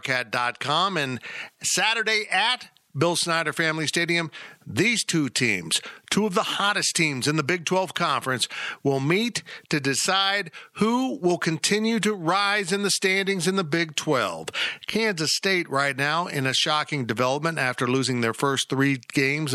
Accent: American